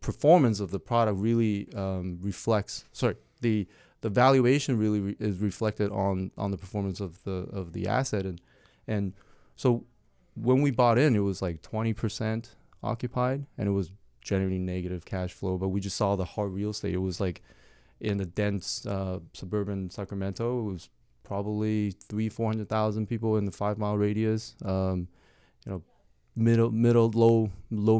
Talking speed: 175 wpm